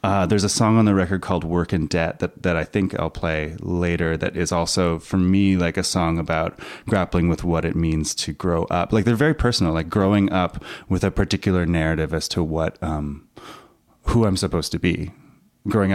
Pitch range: 80-100 Hz